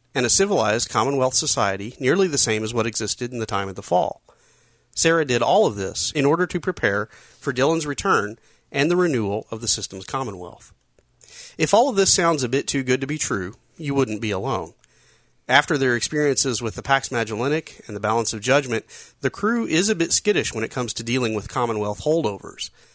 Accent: American